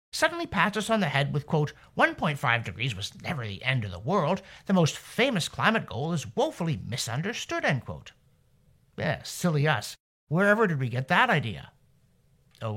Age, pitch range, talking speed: 50-69, 130-200 Hz, 175 wpm